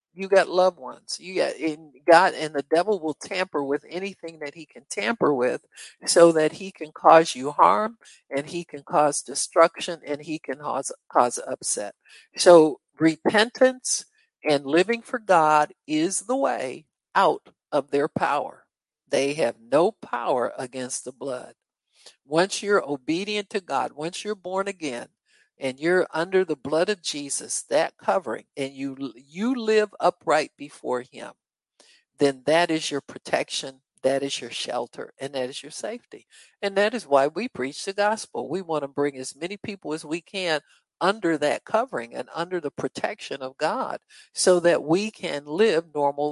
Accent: American